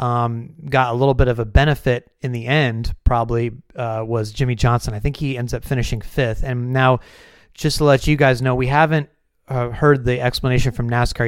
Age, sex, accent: 30-49, male, American